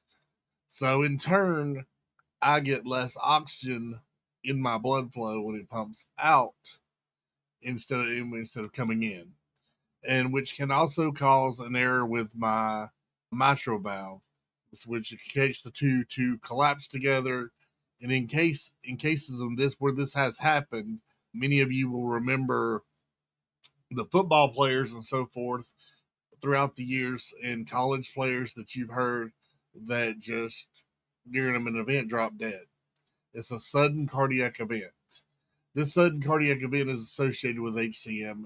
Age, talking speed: 40-59, 140 wpm